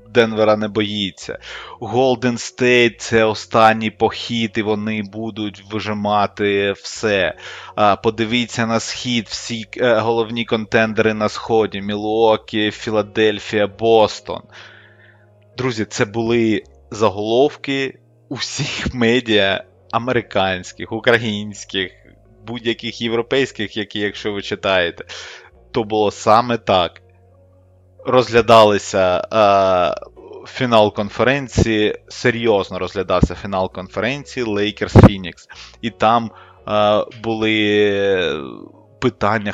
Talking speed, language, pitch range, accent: 85 wpm, Ukrainian, 95-115 Hz, native